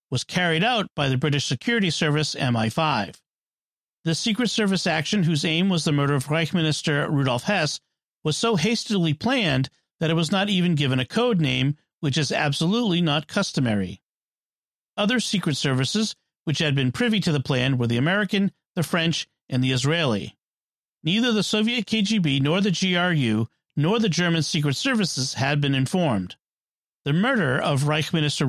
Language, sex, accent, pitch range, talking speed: English, male, American, 140-190 Hz, 165 wpm